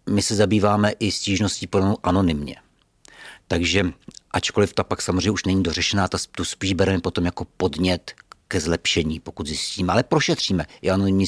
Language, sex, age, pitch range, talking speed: Czech, male, 50-69, 85-105 Hz, 155 wpm